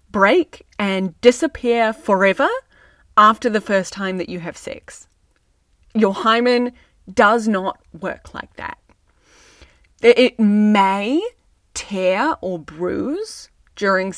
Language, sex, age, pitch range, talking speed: English, female, 20-39, 190-245 Hz, 105 wpm